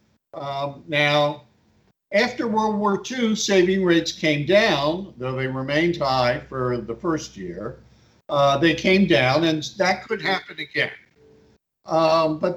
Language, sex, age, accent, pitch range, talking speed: English, male, 60-79, American, 125-175 Hz, 140 wpm